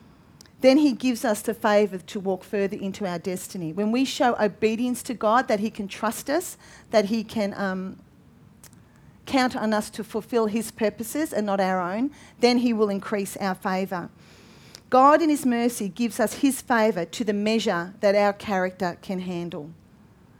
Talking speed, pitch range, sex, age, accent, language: 175 wpm, 200-240 Hz, female, 40-59, Australian, English